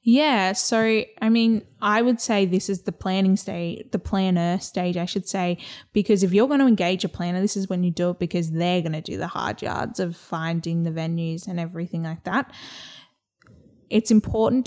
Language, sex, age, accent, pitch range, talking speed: English, female, 10-29, Australian, 175-220 Hz, 205 wpm